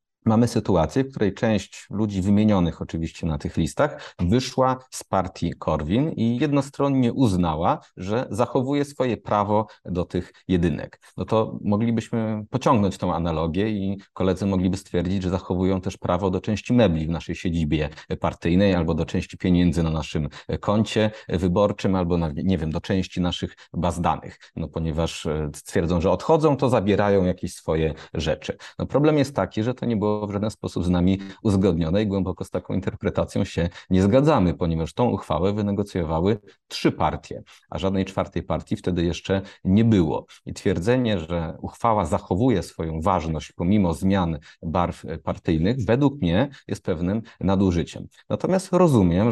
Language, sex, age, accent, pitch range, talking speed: Polish, male, 30-49, native, 85-110 Hz, 155 wpm